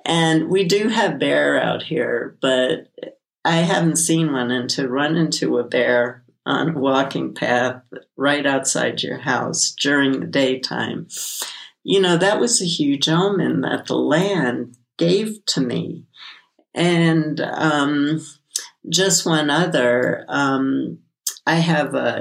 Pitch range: 130-160 Hz